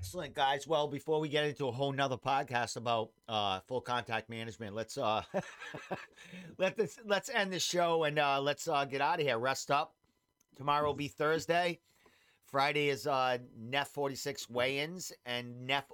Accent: American